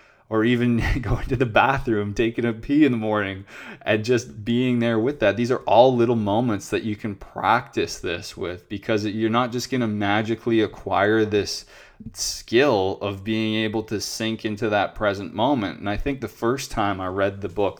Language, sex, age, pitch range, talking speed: English, male, 20-39, 100-115 Hz, 195 wpm